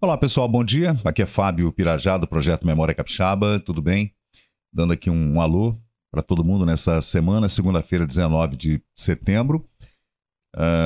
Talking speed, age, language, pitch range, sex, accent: 155 wpm, 50-69, Portuguese, 80-105 Hz, male, Brazilian